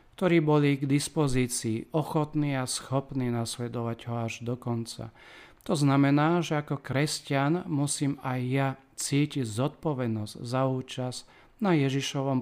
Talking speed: 125 wpm